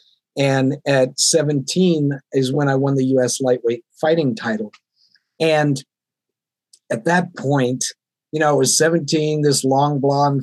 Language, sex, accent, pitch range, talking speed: English, male, American, 130-155 Hz, 140 wpm